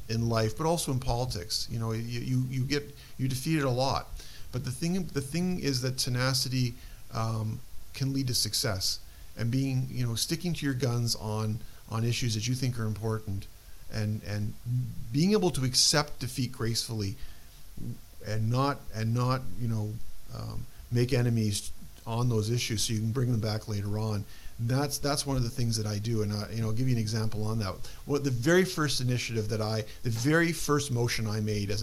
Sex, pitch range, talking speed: male, 105-130 Hz, 200 wpm